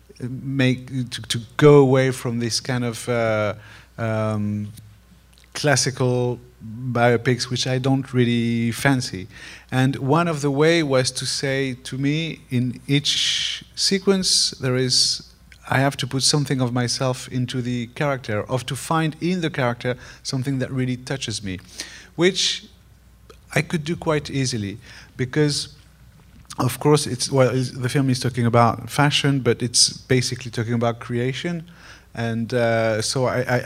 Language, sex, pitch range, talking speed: English, male, 115-140 Hz, 150 wpm